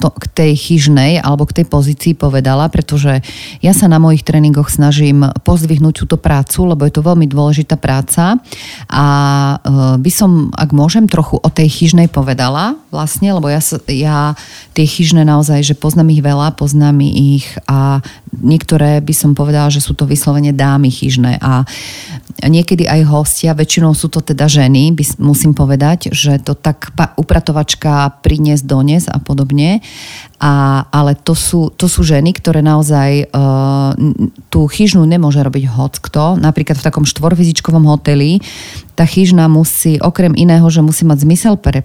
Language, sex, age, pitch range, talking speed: Slovak, female, 40-59, 140-165 Hz, 160 wpm